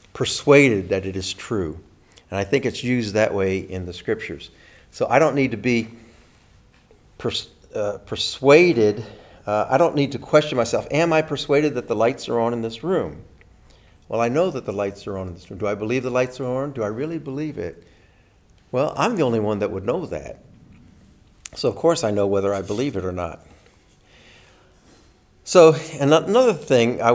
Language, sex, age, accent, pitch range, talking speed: English, male, 50-69, American, 100-130 Hz, 200 wpm